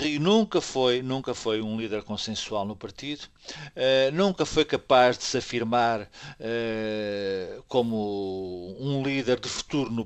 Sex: male